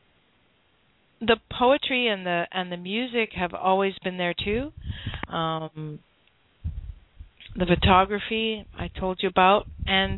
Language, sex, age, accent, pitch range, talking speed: English, female, 50-69, American, 165-200 Hz, 120 wpm